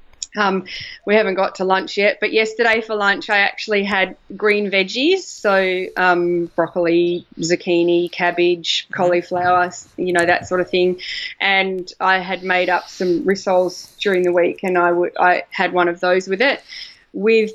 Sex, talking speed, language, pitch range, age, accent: female, 170 wpm, English, 185-215 Hz, 20-39, Australian